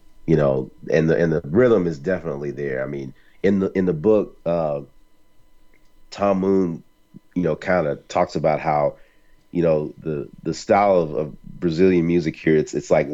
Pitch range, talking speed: 75-90 Hz, 185 wpm